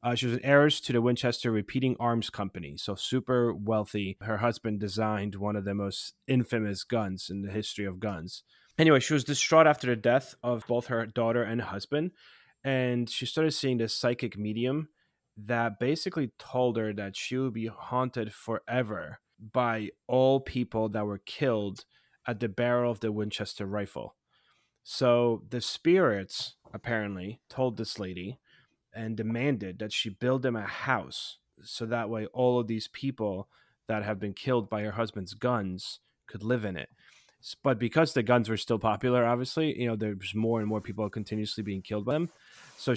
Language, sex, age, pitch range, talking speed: English, male, 30-49, 105-125 Hz, 175 wpm